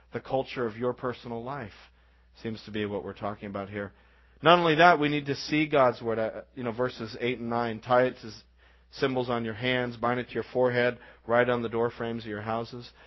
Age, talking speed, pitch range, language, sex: 40-59, 225 wpm, 110-125 Hz, English, male